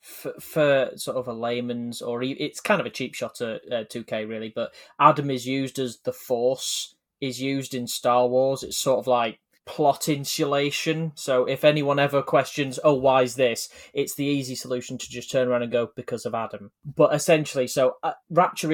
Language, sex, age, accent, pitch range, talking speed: English, male, 20-39, British, 120-135 Hz, 200 wpm